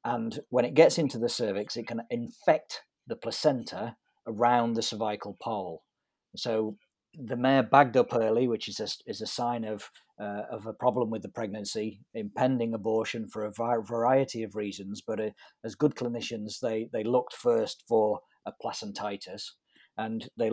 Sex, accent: male, British